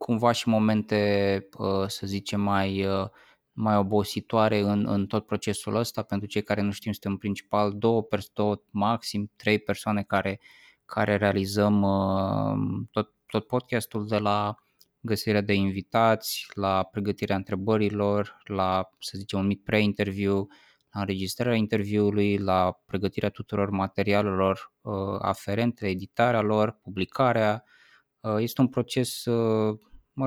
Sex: male